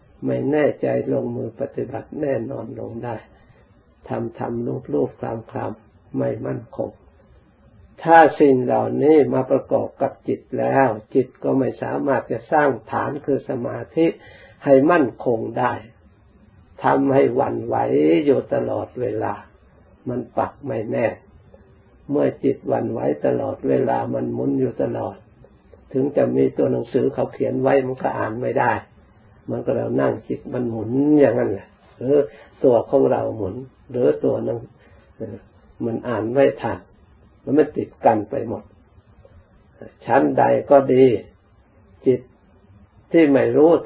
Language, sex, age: Thai, male, 60-79